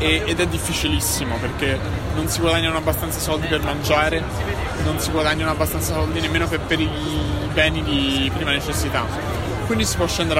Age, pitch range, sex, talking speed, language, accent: 20-39, 85-145 Hz, male, 160 wpm, Italian, native